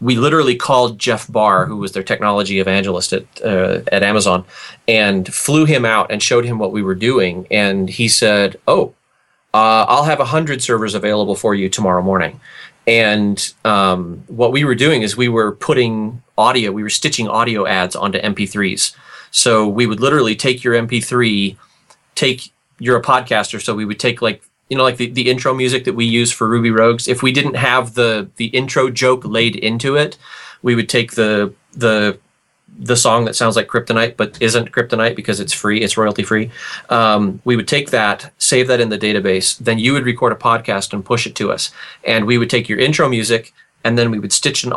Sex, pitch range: male, 105-125 Hz